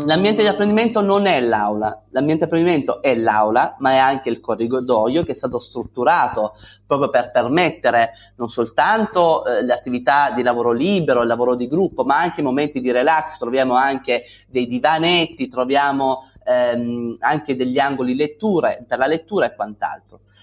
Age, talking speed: 30-49, 165 wpm